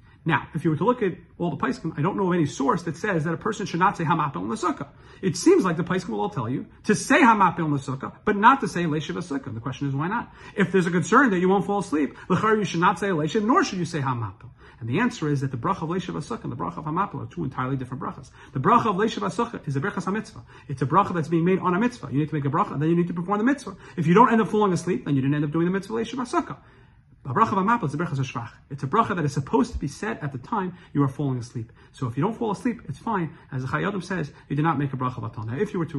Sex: male